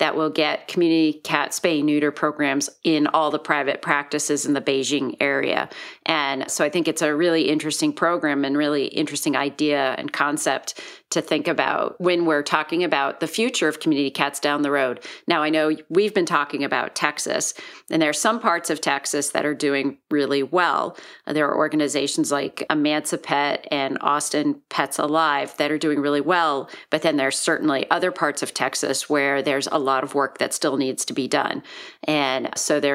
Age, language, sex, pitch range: 40-59, English, female, 140-165 Hz